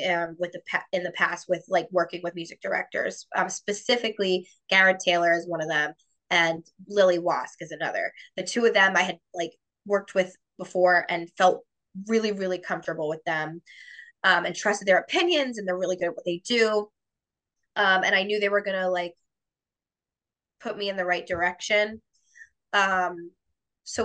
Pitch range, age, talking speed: 180-215 Hz, 20-39, 175 wpm